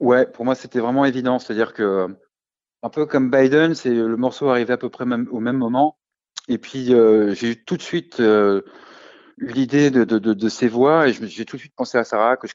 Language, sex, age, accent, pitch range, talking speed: French, male, 40-59, French, 100-130 Hz, 230 wpm